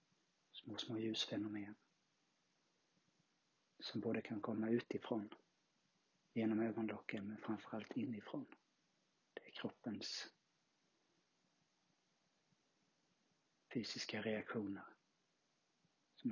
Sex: male